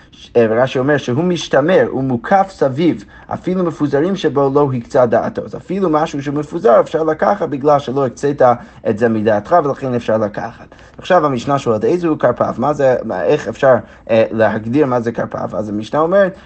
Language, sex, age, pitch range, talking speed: Hebrew, male, 30-49, 115-160 Hz, 160 wpm